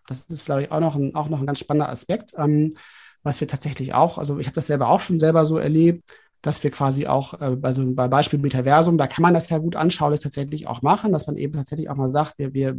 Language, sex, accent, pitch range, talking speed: German, male, German, 135-155 Hz, 265 wpm